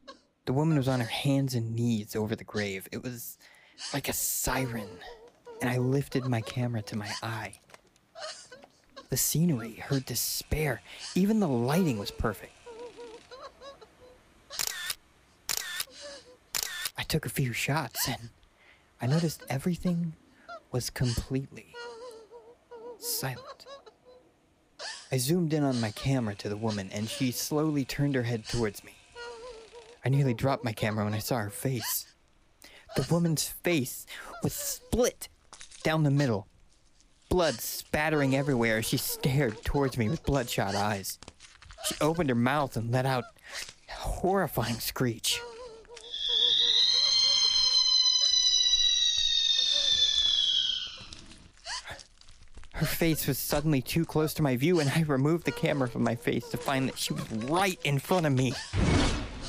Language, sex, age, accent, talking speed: English, male, 30-49, American, 130 wpm